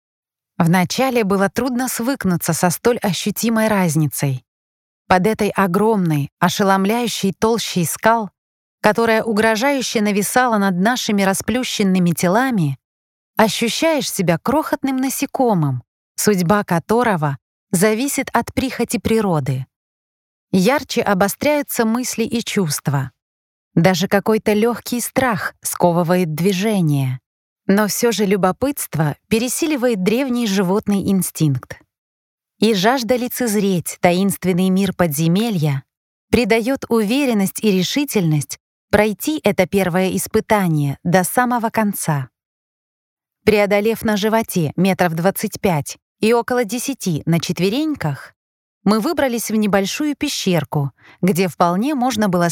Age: 30-49